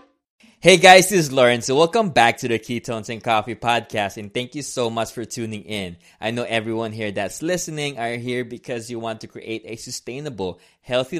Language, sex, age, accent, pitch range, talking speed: English, male, 20-39, Filipino, 100-125 Hz, 205 wpm